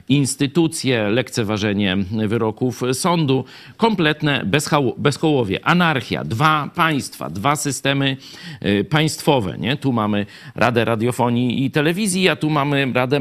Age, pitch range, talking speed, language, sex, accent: 50-69, 115-160 Hz, 100 wpm, Polish, male, native